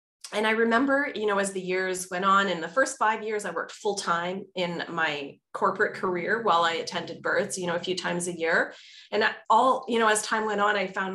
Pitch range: 170-205 Hz